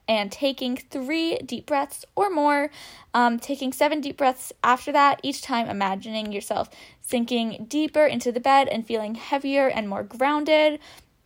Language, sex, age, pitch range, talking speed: English, female, 10-29, 225-290 Hz, 155 wpm